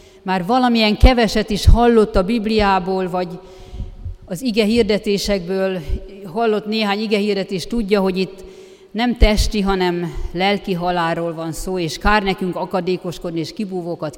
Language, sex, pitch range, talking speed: Hungarian, female, 175-205 Hz, 130 wpm